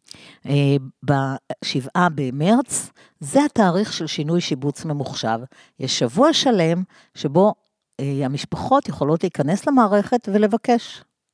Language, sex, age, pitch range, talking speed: Hebrew, female, 50-69, 145-230 Hz, 95 wpm